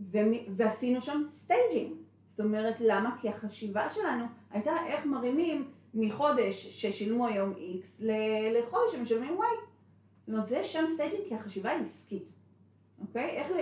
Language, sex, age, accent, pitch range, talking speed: Hebrew, female, 30-49, native, 180-225 Hz, 140 wpm